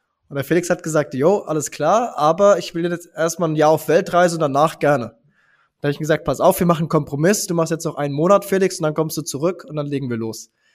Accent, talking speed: German, 270 wpm